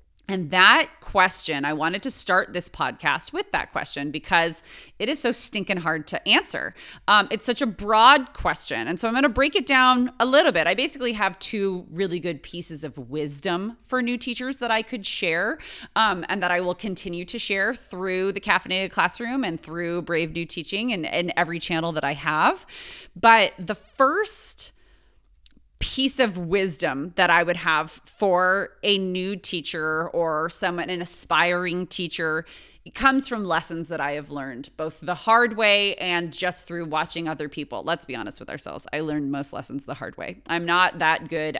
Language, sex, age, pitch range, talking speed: English, female, 30-49, 160-220 Hz, 185 wpm